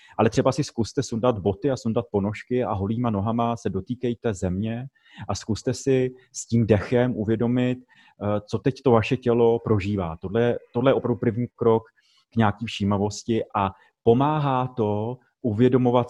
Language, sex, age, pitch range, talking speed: Czech, male, 30-49, 110-130 Hz, 155 wpm